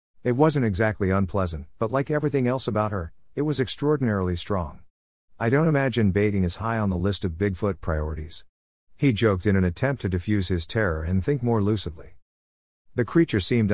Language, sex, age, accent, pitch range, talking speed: English, male, 50-69, American, 90-120 Hz, 185 wpm